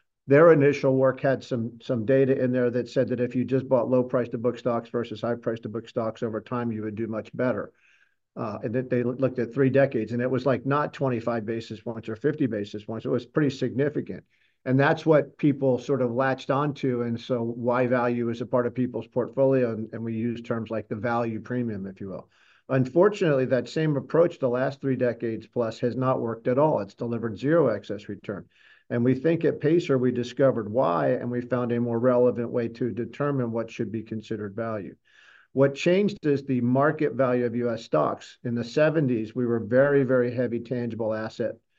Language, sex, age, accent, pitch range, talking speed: English, male, 50-69, American, 115-135 Hz, 215 wpm